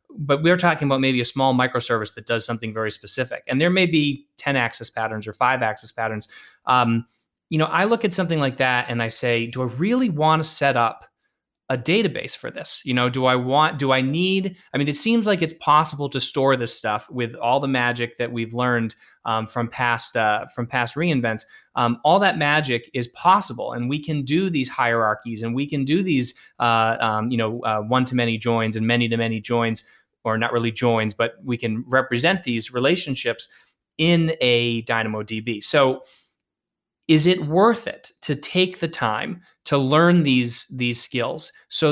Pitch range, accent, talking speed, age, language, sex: 115-145 Hz, American, 195 wpm, 20-39, English, male